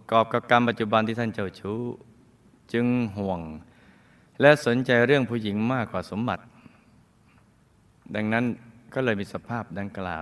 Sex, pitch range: male, 100-125 Hz